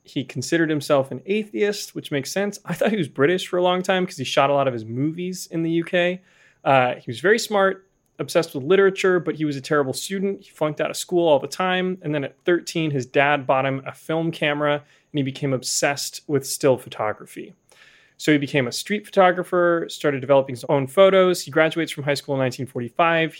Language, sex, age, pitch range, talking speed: English, male, 30-49, 135-175 Hz, 220 wpm